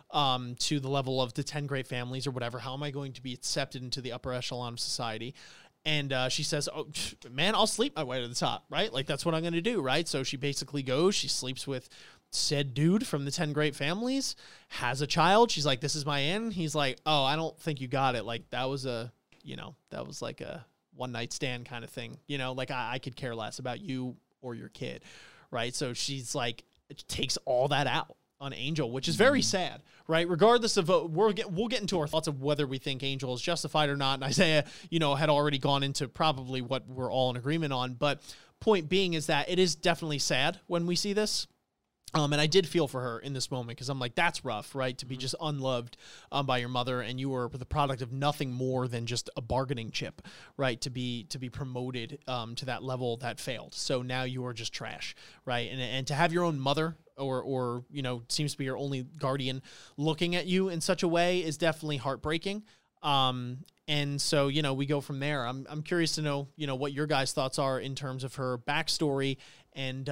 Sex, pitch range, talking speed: male, 130-155 Hz, 240 wpm